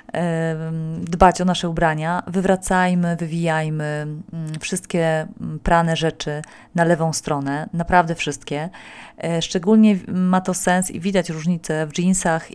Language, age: Polish, 30-49